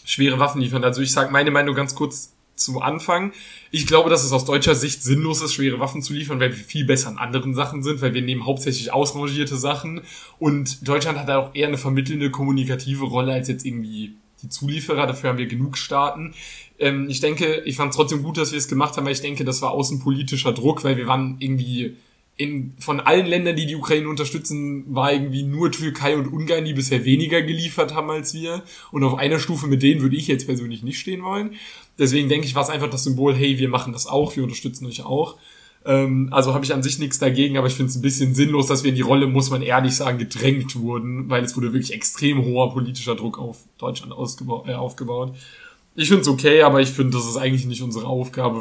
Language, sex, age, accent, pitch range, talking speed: German, male, 10-29, German, 130-145 Hz, 225 wpm